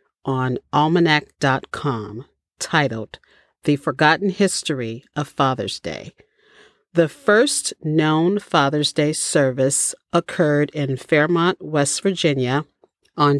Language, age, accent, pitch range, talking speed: English, 40-59, American, 140-175 Hz, 95 wpm